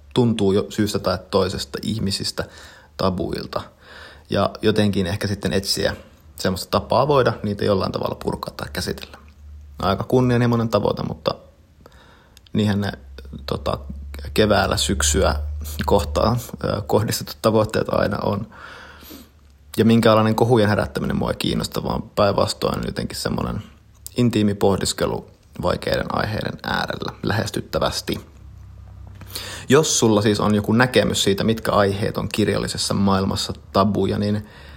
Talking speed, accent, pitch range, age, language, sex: 115 wpm, native, 80-105 Hz, 30-49, Finnish, male